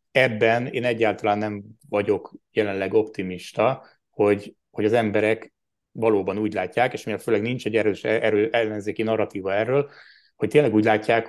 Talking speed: 145 wpm